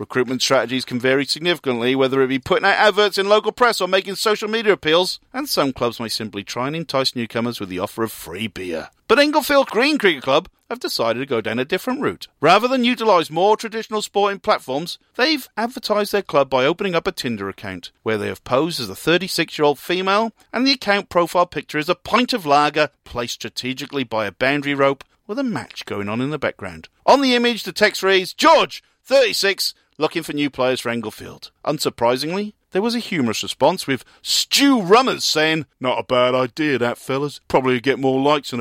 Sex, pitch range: male, 125-205 Hz